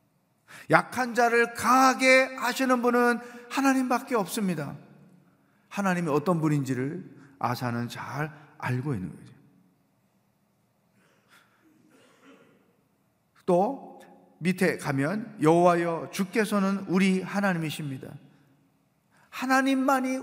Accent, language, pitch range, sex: native, Korean, 135-220 Hz, male